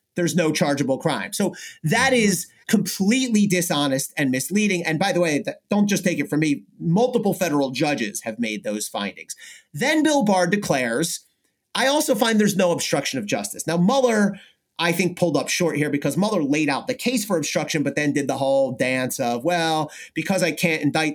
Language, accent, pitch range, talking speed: English, American, 145-205 Hz, 195 wpm